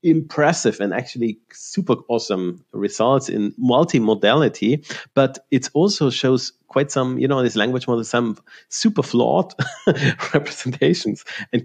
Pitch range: 115-150 Hz